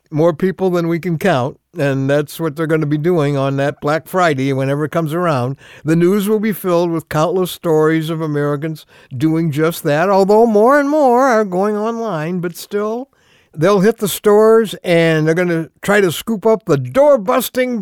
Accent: American